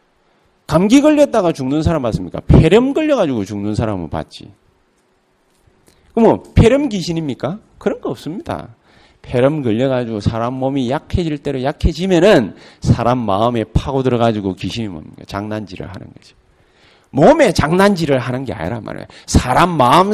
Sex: male